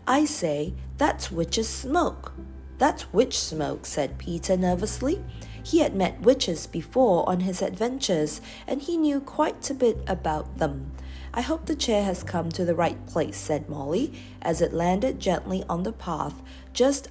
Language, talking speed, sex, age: English, 165 wpm, female, 50-69